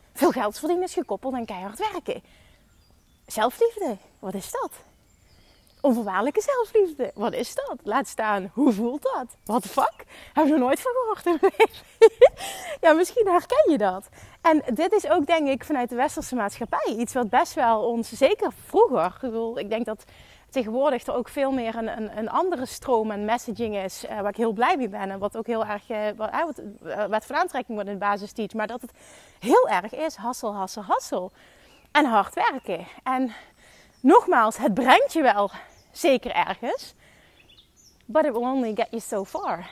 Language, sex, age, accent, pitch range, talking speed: Dutch, female, 30-49, Dutch, 220-315 Hz, 180 wpm